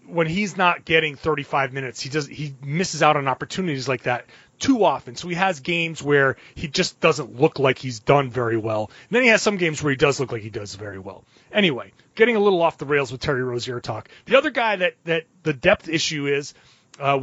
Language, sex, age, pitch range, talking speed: English, male, 30-49, 145-200 Hz, 235 wpm